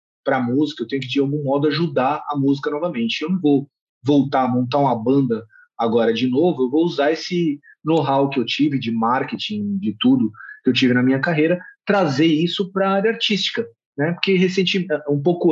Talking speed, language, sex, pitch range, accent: 195 wpm, Portuguese, male, 140-185 Hz, Brazilian